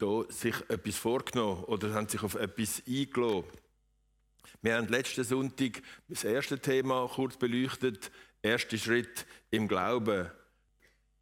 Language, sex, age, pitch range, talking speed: German, male, 50-69, 110-140 Hz, 120 wpm